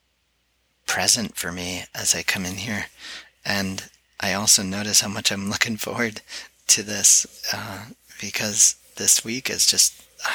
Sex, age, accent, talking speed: male, 30-49, American, 150 wpm